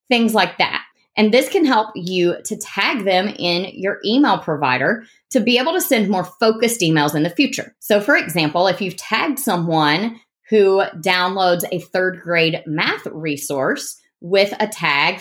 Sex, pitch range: female, 175-240 Hz